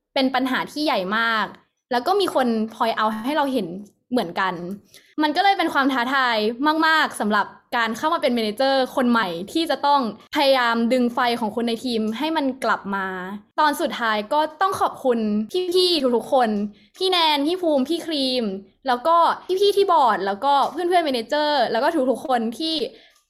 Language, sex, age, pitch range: English, female, 20-39, 220-295 Hz